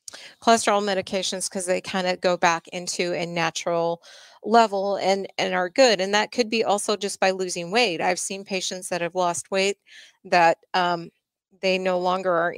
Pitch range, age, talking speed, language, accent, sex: 175-210 Hz, 30-49, 180 wpm, English, American, female